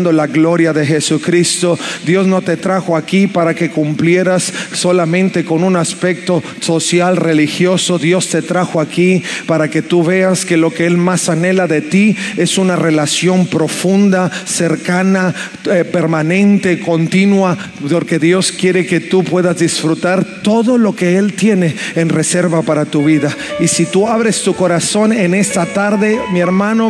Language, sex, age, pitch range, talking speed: Spanish, male, 40-59, 175-215 Hz, 155 wpm